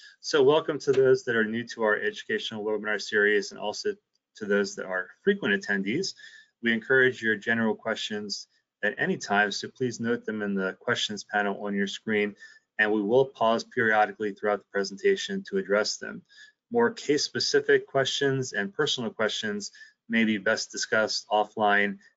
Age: 20-39